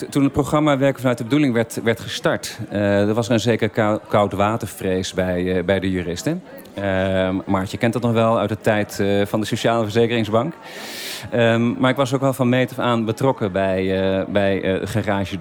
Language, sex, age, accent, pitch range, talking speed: Dutch, male, 40-59, Dutch, 100-125 Hz, 210 wpm